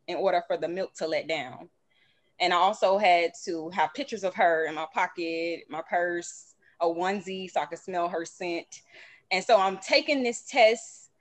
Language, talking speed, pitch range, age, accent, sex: English, 195 wpm, 160-205 Hz, 20-39, American, female